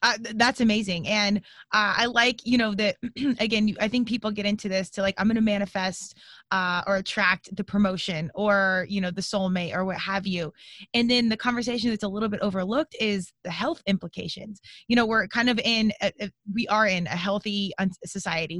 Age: 20-39